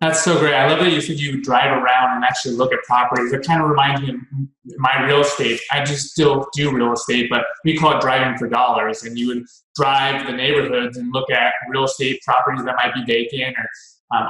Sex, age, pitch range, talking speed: male, 20-39, 125-160 Hz, 235 wpm